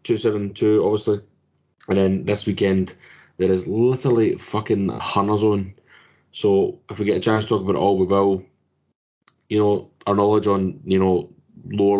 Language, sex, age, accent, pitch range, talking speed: English, male, 20-39, British, 95-110 Hz, 175 wpm